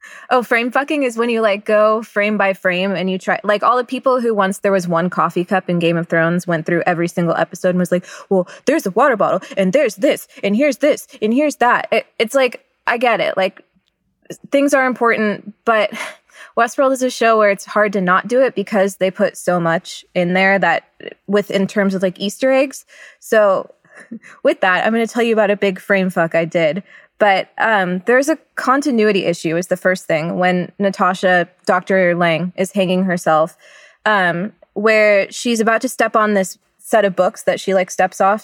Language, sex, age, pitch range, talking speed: English, female, 20-39, 185-230 Hz, 210 wpm